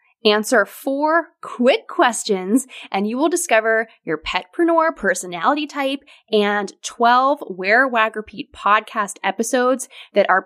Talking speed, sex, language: 120 wpm, female, English